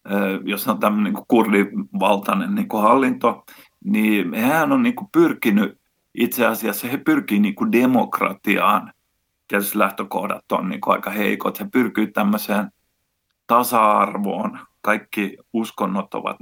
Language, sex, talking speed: Finnish, male, 115 wpm